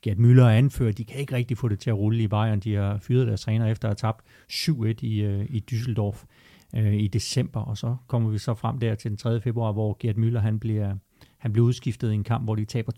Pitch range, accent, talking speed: 105-120 Hz, native, 265 wpm